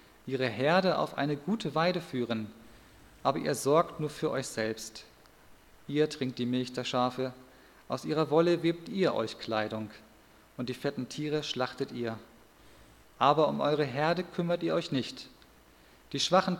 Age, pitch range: 40-59, 120-160 Hz